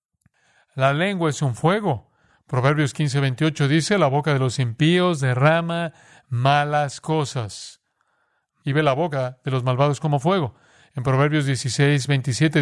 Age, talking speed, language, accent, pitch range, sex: 40-59, 145 wpm, Spanish, Mexican, 130-160 Hz, male